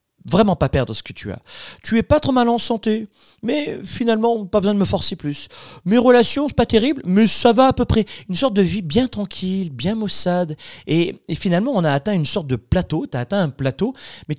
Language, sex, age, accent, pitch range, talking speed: French, male, 30-49, French, 120-195 Hz, 240 wpm